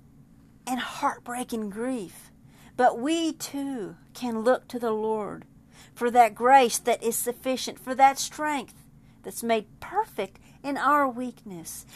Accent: American